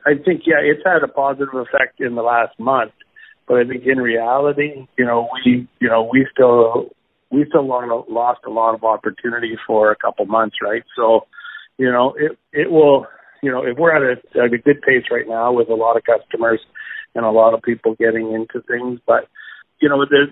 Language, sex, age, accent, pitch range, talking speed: English, male, 50-69, American, 115-130 Hz, 215 wpm